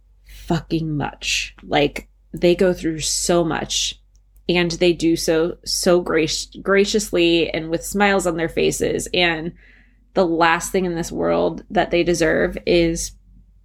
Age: 20-39